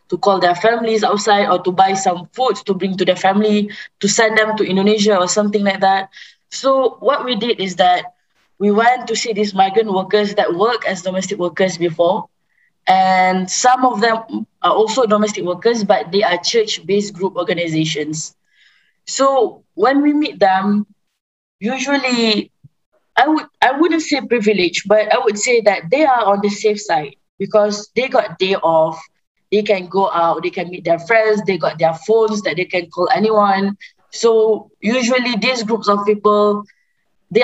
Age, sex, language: 20-39, female, English